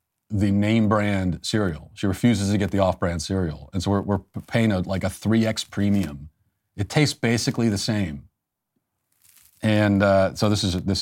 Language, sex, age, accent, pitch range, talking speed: English, male, 40-59, American, 100-125 Hz, 180 wpm